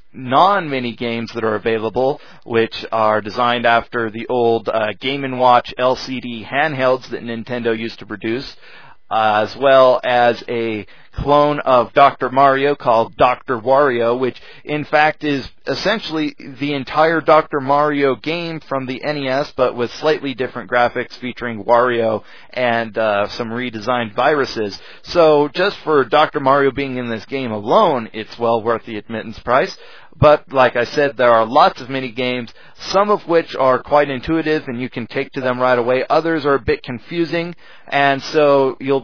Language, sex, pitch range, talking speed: English, male, 120-145 Hz, 165 wpm